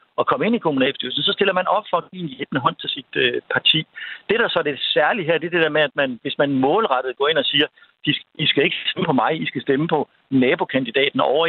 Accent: native